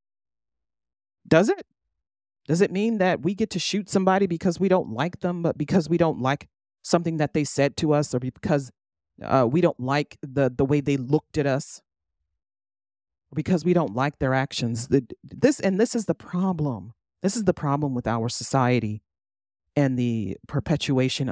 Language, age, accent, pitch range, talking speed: English, 40-59, American, 120-170 Hz, 180 wpm